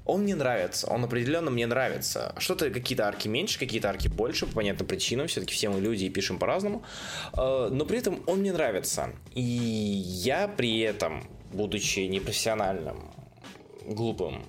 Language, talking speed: Russian, 155 wpm